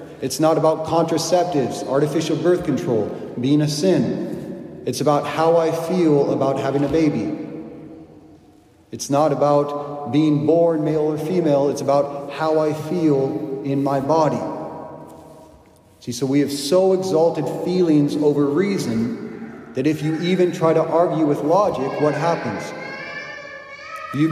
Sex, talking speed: male, 140 wpm